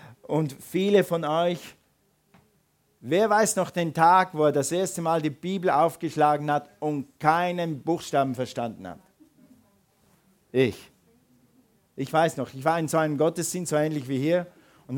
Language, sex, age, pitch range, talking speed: German, male, 50-69, 135-175 Hz, 150 wpm